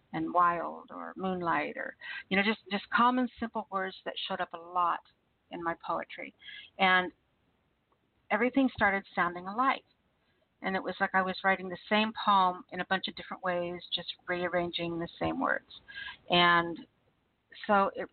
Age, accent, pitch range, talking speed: 50-69, American, 175-215 Hz, 160 wpm